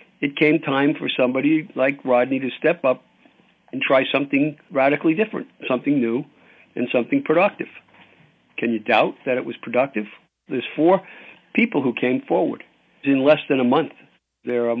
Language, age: English, 60-79